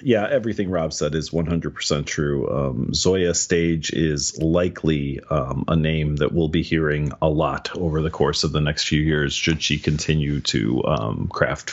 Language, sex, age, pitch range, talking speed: English, male, 40-59, 75-90 Hz, 180 wpm